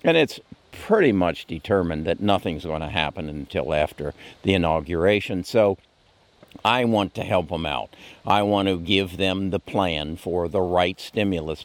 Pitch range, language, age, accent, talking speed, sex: 85-105 Hz, English, 60-79, American, 165 wpm, male